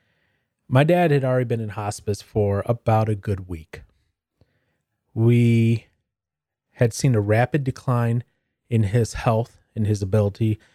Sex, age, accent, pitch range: male, 30-49, American, 105-130 Hz